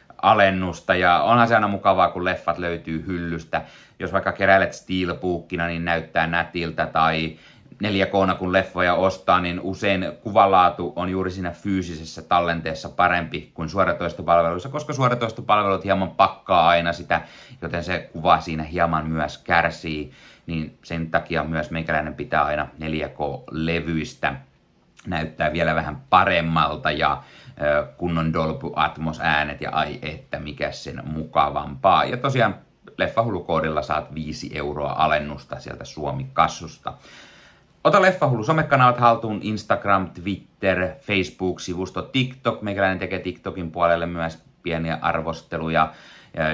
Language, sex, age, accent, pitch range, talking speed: Finnish, male, 30-49, native, 80-95 Hz, 120 wpm